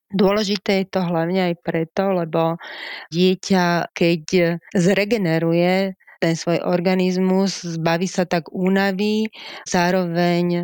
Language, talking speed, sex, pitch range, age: Slovak, 100 wpm, female, 170-190 Hz, 30-49